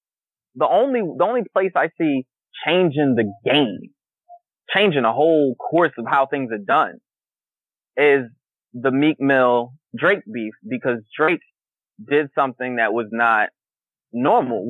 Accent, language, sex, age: American, English, male, 20-39